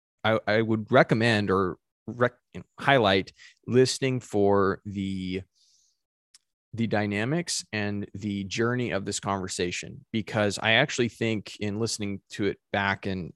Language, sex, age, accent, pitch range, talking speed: English, male, 20-39, American, 95-110 Hz, 125 wpm